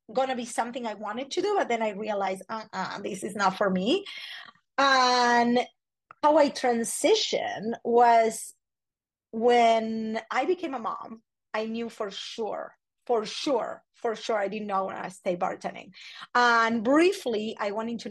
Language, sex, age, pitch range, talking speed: English, female, 30-49, 210-260 Hz, 160 wpm